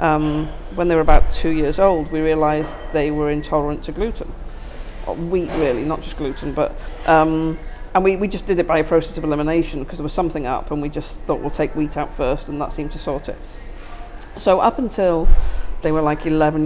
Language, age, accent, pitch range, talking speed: English, 40-59, British, 155-215 Hz, 215 wpm